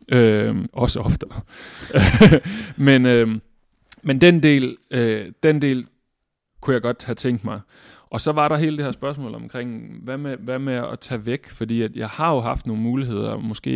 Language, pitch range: Danish, 110-135 Hz